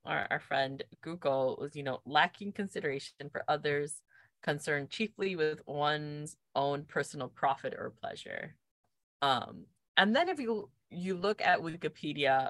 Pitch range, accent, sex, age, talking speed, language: 140-200 Hz, American, female, 20-39, 140 wpm, English